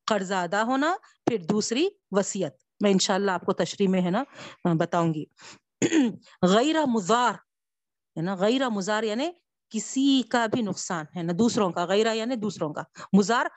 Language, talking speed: Urdu, 160 wpm